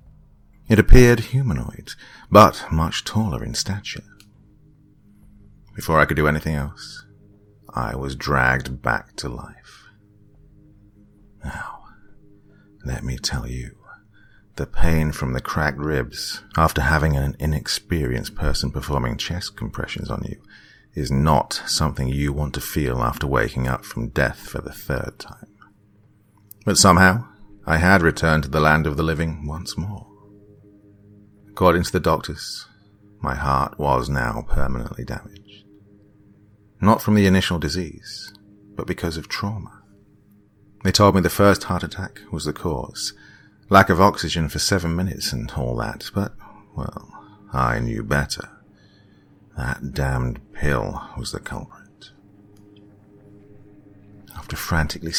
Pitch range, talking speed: 75-105 Hz, 130 wpm